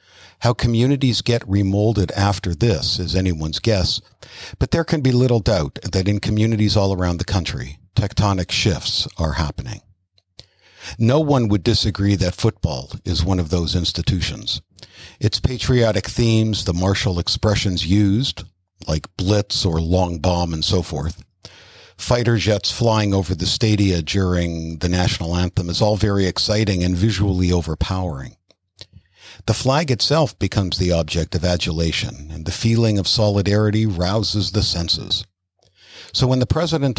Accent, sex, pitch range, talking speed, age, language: American, male, 90-110 Hz, 145 wpm, 60-79, English